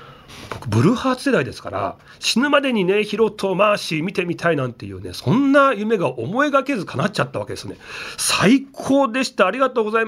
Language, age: Japanese, 40-59